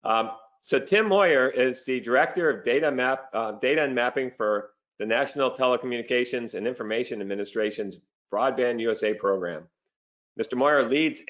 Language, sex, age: English, male, 50-69